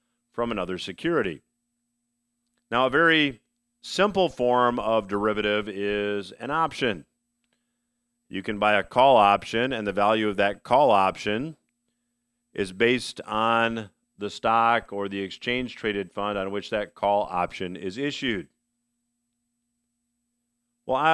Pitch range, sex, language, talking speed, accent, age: 105-165 Hz, male, English, 125 wpm, American, 50-69